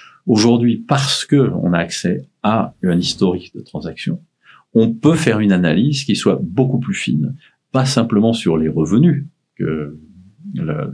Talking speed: 155 wpm